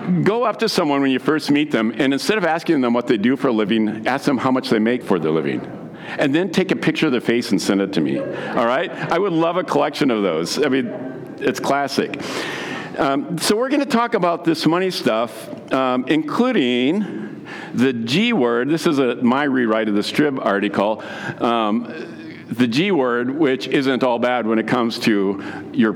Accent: American